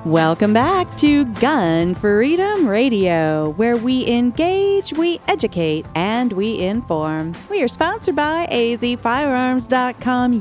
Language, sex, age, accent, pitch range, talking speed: English, female, 40-59, American, 165-260 Hz, 110 wpm